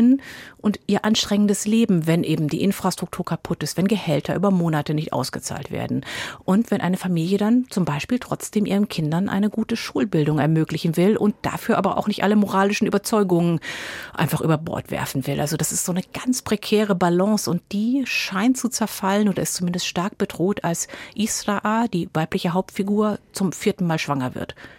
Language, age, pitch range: German, 50-69, 165-210 Hz